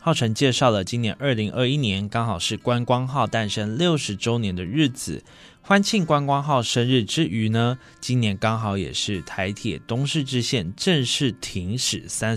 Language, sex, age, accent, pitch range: Chinese, male, 20-39, native, 105-140 Hz